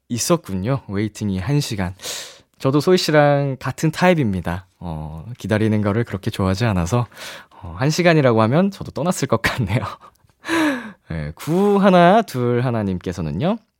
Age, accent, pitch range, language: 20-39, native, 110-175 Hz, Korean